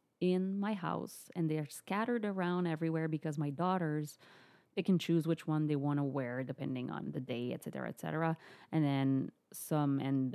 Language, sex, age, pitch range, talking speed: English, female, 30-49, 145-170 Hz, 180 wpm